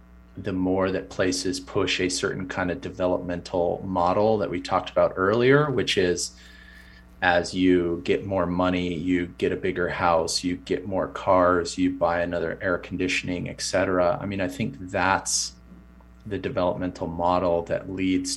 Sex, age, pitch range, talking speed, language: male, 30-49, 85-95 Hz, 160 wpm, English